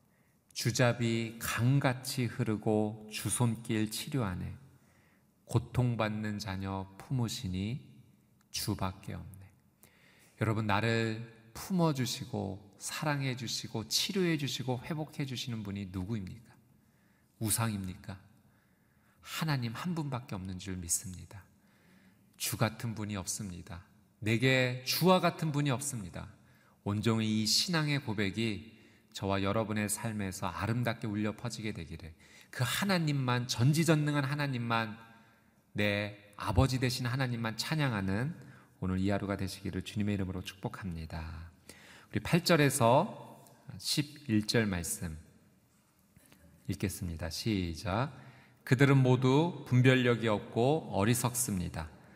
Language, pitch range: Korean, 100-125 Hz